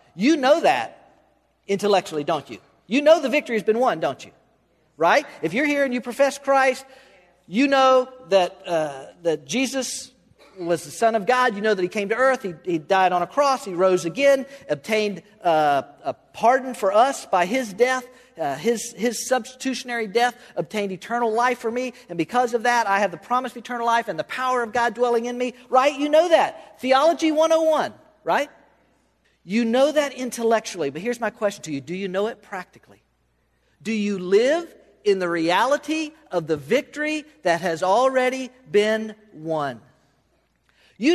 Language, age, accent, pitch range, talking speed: English, 50-69, American, 205-270 Hz, 180 wpm